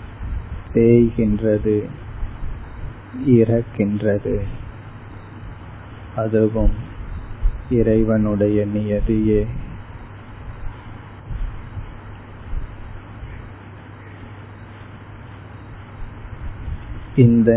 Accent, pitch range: native, 105-115 Hz